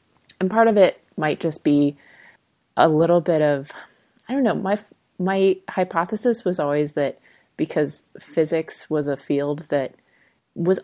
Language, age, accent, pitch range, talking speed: English, 20-39, American, 140-165 Hz, 150 wpm